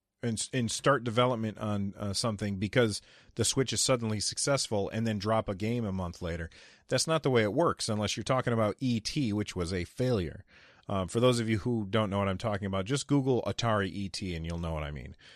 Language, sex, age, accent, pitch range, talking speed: English, male, 30-49, American, 100-130 Hz, 225 wpm